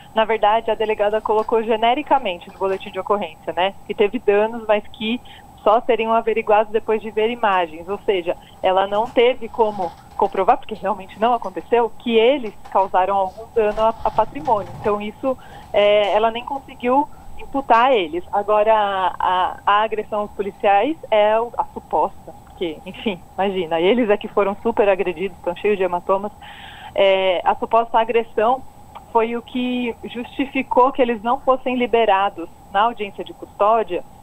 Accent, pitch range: Brazilian, 200-235 Hz